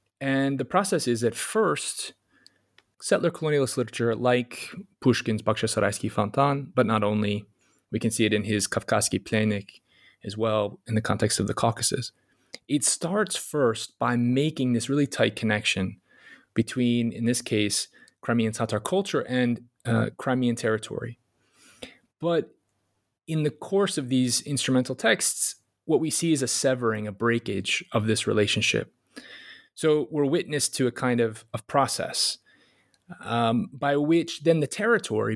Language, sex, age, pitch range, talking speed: English, male, 20-39, 110-130 Hz, 145 wpm